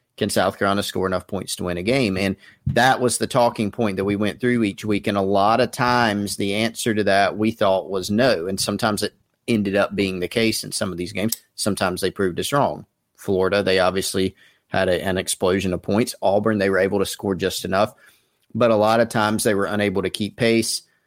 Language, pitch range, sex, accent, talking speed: English, 100-115 Hz, male, American, 230 wpm